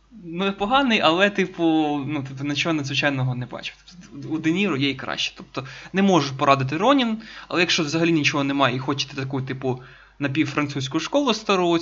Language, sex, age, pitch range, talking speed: Ukrainian, male, 20-39, 135-170 Hz, 160 wpm